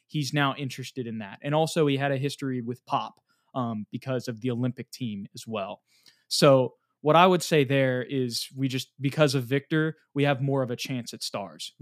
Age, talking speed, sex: 20-39, 210 wpm, male